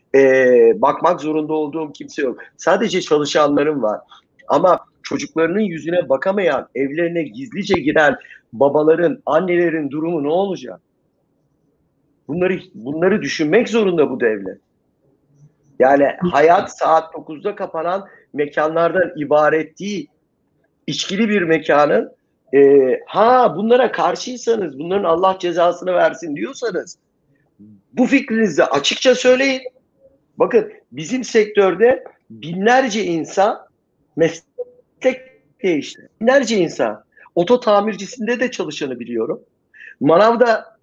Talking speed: 95 wpm